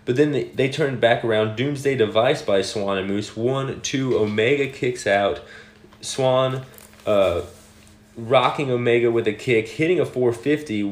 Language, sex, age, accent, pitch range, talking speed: English, male, 30-49, American, 105-130 Hz, 155 wpm